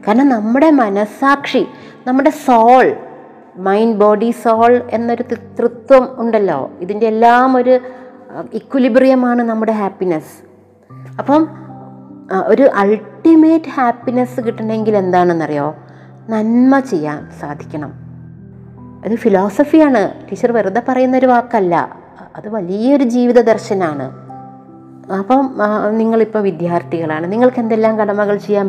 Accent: native